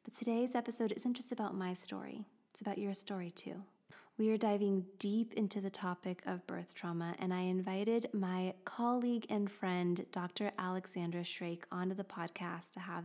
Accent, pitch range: American, 180-215 Hz